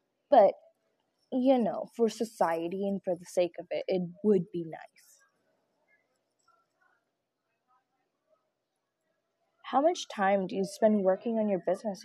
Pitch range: 190-290 Hz